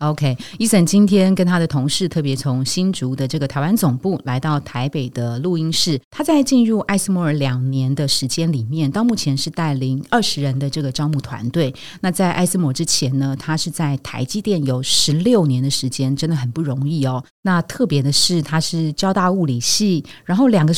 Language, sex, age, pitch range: Chinese, female, 30-49, 140-185 Hz